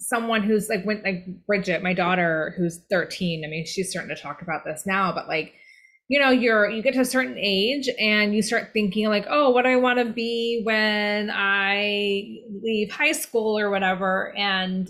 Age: 20-39